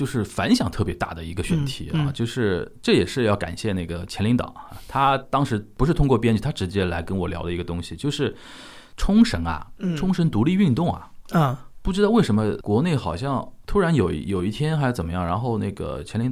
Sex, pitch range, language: male, 95-135 Hz, Chinese